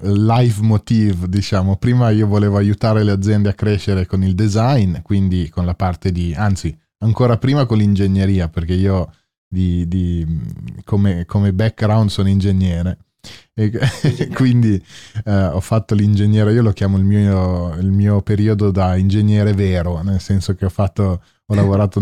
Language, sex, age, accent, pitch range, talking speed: English, male, 20-39, Italian, 90-105 Hz, 155 wpm